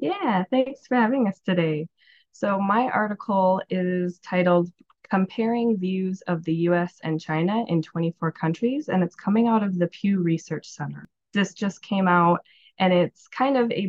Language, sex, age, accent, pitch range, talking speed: English, female, 20-39, American, 170-200 Hz, 170 wpm